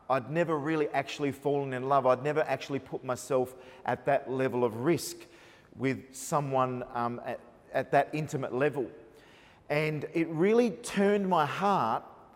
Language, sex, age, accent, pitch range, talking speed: English, male, 40-59, Australian, 135-180 Hz, 150 wpm